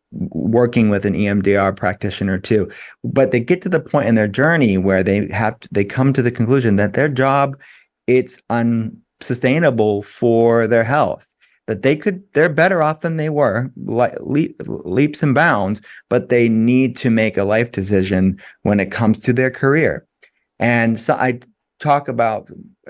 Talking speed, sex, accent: 170 wpm, male, American